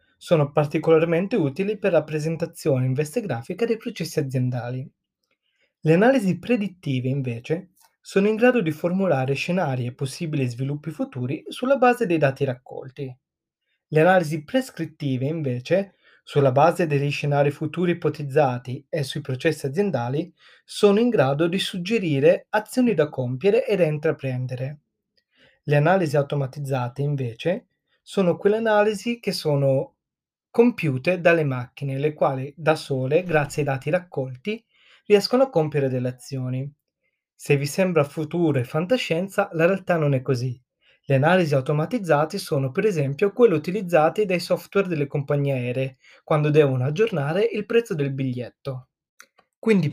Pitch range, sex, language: 140-190 Hz, male, Italian